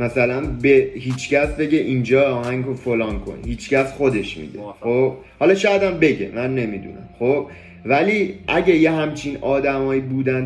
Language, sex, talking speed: Persian, male, 140 wpm